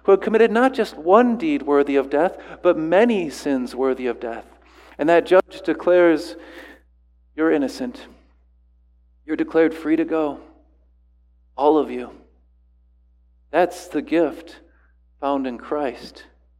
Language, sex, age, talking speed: English, male, 40-59, 130 wpm